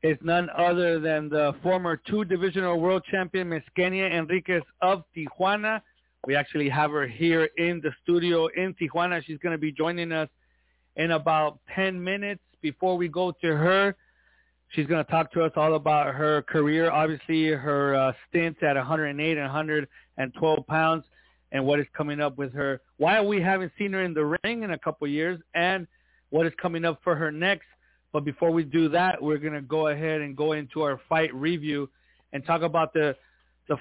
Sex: male